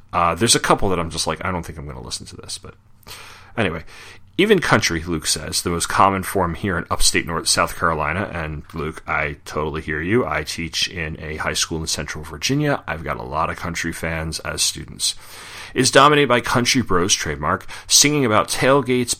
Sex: male